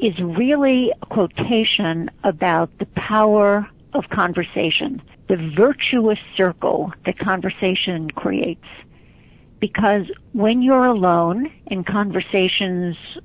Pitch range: 180-225 Hz